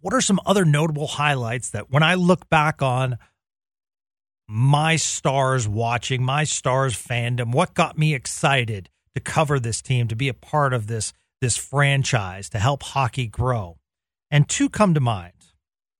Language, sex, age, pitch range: English, male, 40-59, 115-155 Hz